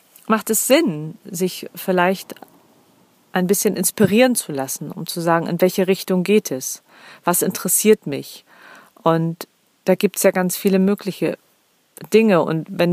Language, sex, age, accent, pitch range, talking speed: German, female, 40-59, German, 175-215 Hz, 150 wpm